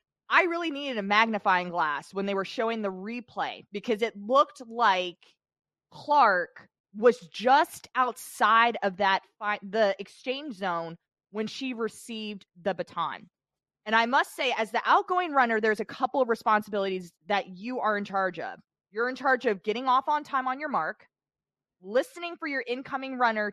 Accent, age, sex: American, 20-39, female